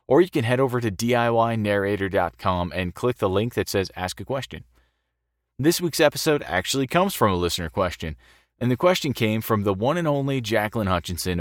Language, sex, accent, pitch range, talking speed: English, male, American, 90-120 Hz, 190 wpm